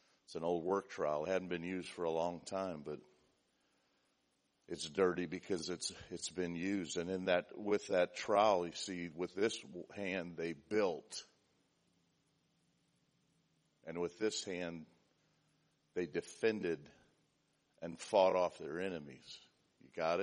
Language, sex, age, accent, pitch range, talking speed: English, male, 50-69, American, 85-95 Hz, 140 wpm